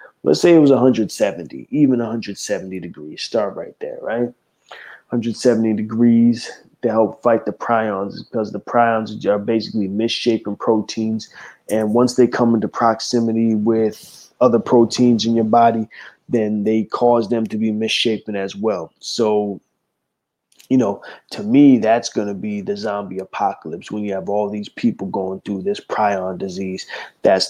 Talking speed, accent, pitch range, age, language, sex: 155 wpm, American, 105-120 Hz, 20-39, English, male